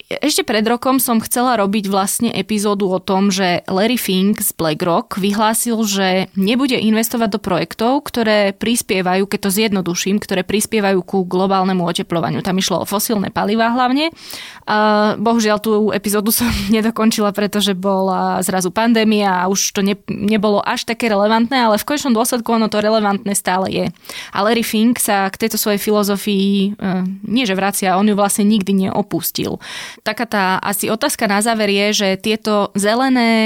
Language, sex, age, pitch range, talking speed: Slovak, female, 20-39, 195-220 Hz, 160 wpm